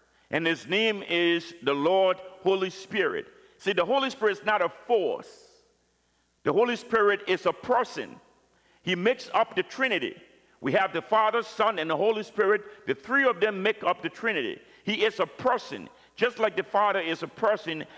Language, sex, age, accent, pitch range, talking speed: English, male, 50-69, American, 175-235 Hz, 185 wpm